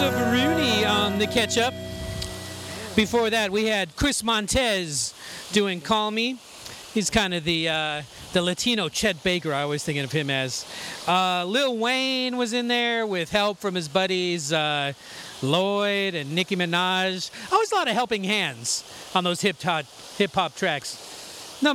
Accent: American